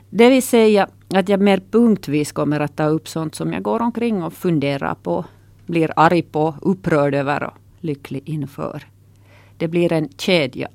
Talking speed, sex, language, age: 175 wpm, female, Swedish, 40-59